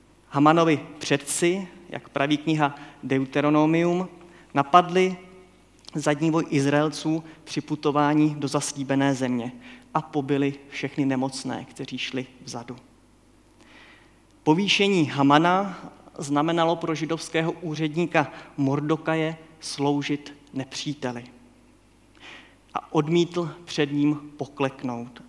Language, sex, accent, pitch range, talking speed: Czech, male, native, 140-165 Hz, 85 wpm